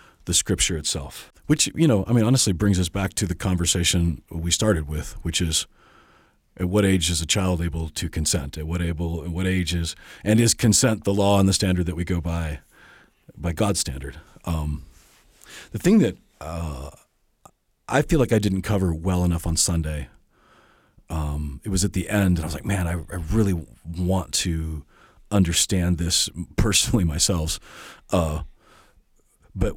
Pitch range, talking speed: 85-105 Hz, 175 wpm